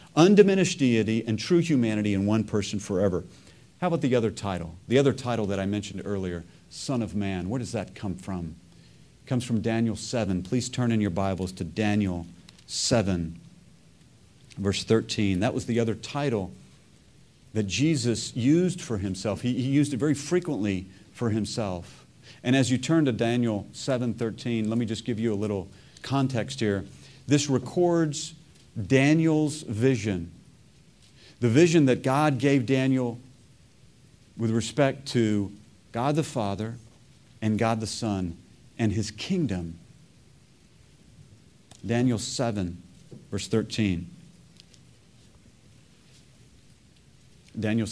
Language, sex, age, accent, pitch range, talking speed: English, male, 40-59, American, 105-135 Hz, 135 wpm